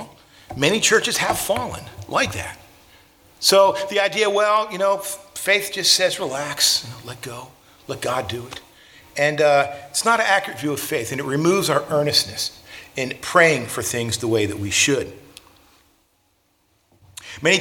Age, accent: 40-59, American